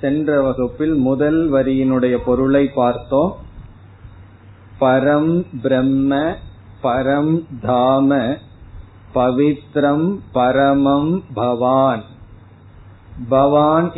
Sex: male